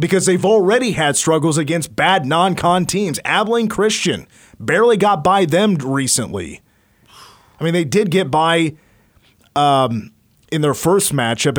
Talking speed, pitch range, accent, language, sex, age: 140 wpm, 120-170 Hz, American, English, male, 30-49